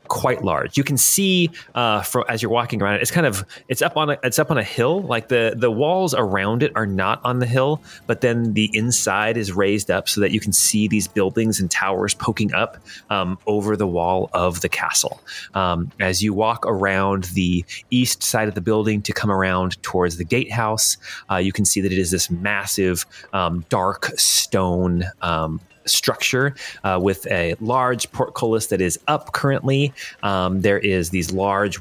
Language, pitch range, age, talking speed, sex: English, 95-115 Hz, 30-49, 195 wpm, male